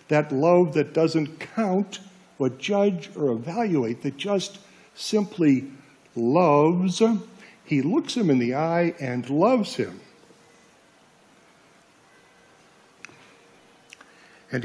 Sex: male